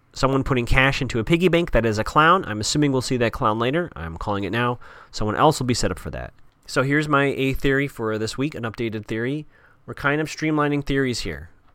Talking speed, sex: 240 wpm, male